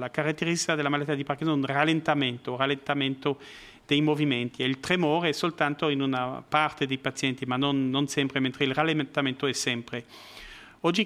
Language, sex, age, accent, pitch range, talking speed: Italian, male, 40-59, native, 140-165 Hz, 180 wpm